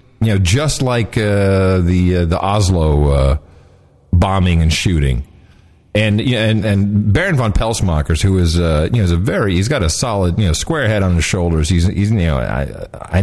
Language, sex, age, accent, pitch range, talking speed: English, male, 50-69, American, 90-120 Hz, 210 wpm